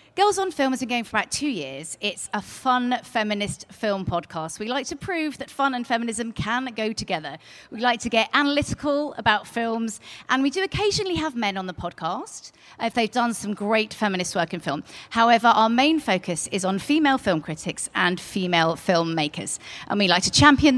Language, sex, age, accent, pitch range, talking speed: English, female, 40-59, British, 190-260 Hz, 200 wpm